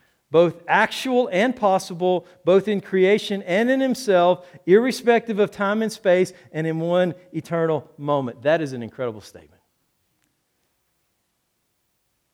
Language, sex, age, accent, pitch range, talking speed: English, male, 50-69, American, 135-180 Hz, 125 wpm